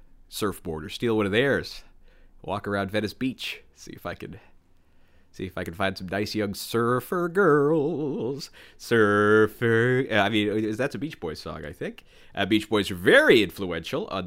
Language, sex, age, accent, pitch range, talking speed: English, male, 30-49, American, 90-125 Hz, 175 wpm